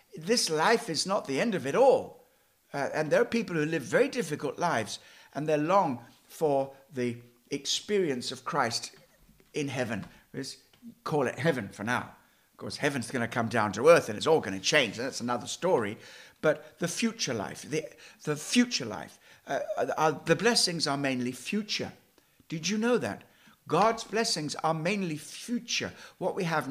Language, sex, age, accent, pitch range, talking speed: English, male, 60-79, British, 125-170 Hz, 185 wpm